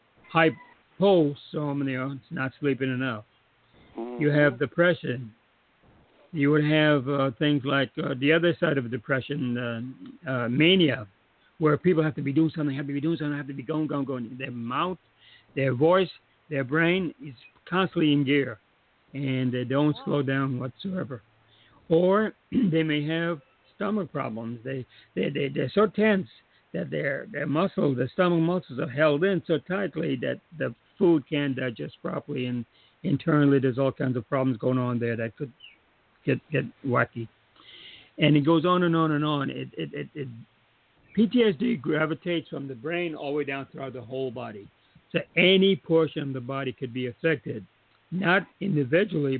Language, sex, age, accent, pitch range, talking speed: English, male, 60-79, American, 130-165 Hz, 170 wpm